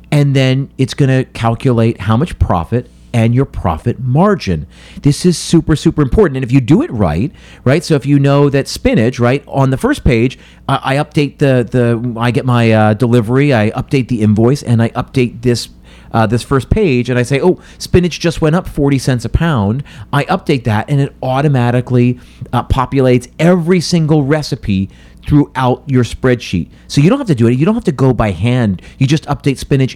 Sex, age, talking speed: male, 40-59, 200 wpm